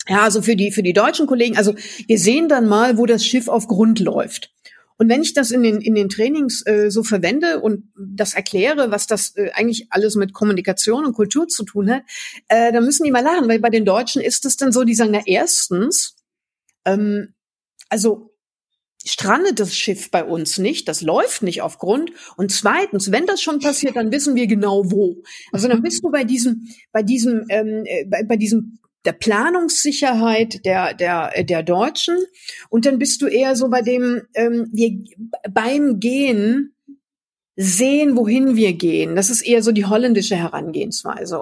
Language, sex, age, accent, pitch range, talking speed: German, female, 50-69, German, 205-250 Hz, 190 wpm